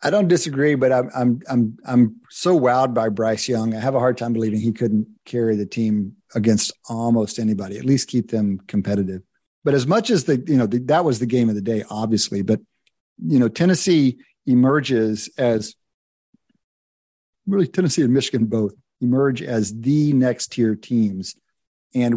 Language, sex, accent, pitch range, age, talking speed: English, male, American, 110-140 Hz, 50-69, 175 wpm